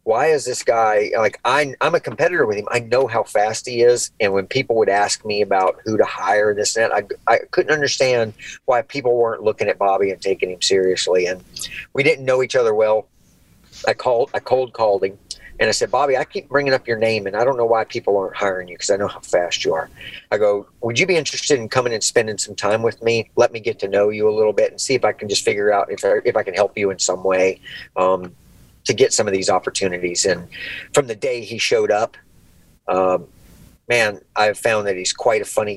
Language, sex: English, male